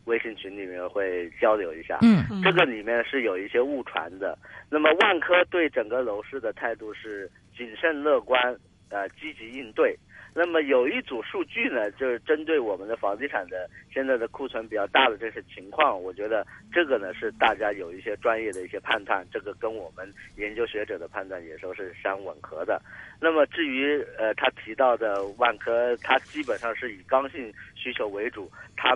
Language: Chinese